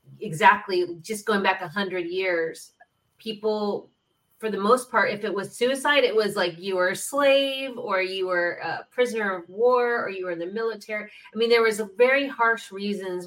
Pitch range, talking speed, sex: 175-230 Hz, 200 wpm, female